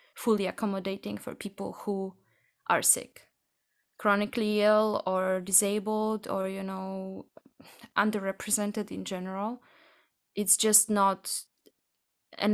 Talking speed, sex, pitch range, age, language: 100 wpm, female, 195-235 Hz, 20-39, English